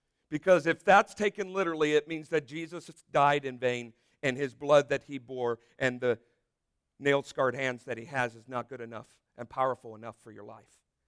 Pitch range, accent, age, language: 135-195 Hz, American, 50-69, English